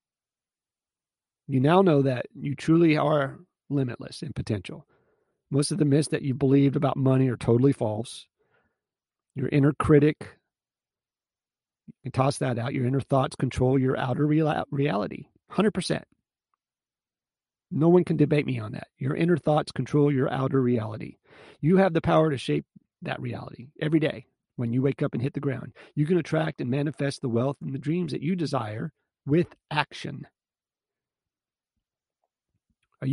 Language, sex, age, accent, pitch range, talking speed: English, male, 40-59, American, 130-160 Hz, 155 wpm